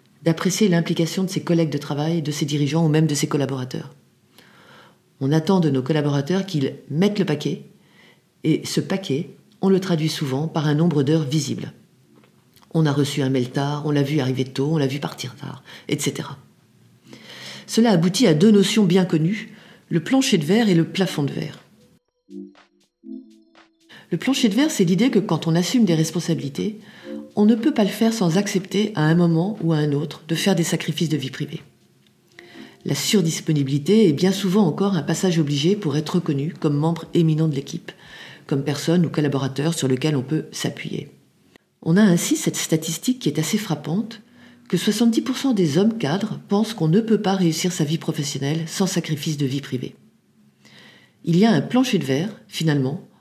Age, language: 40-59, French